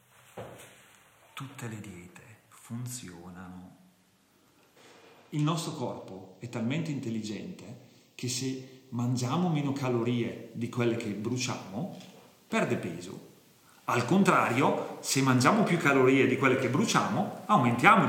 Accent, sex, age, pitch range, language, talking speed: native, male, 40-59, 120-155 Hz, Italian, 105 wpm